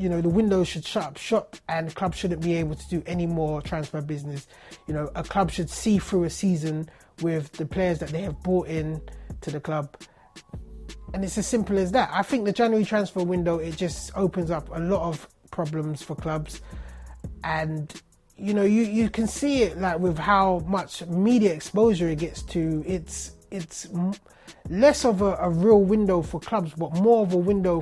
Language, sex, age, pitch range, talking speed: English, male, 20-39, 160-195 Hz, 200 wpm